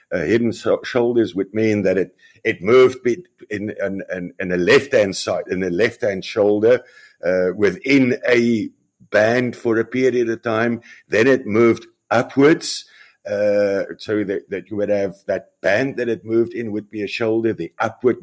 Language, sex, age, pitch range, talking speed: English, male, 50-69, 105-135 Hz, 170 wpm